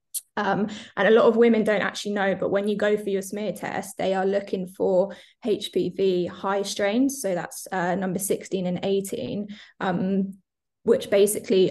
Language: English